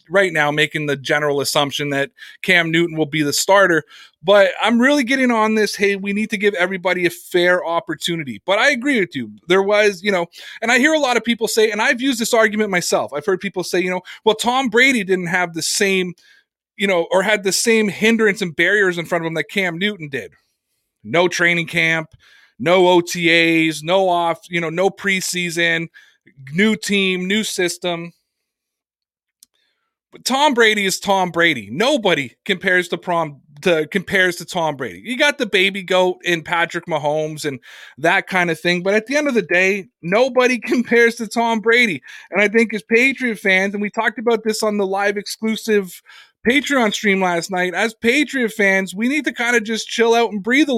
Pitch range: 175-225 Hz